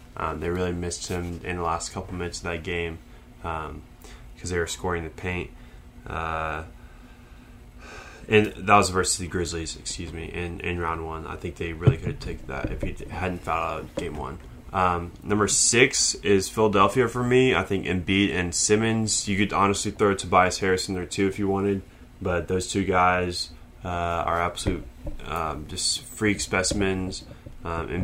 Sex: male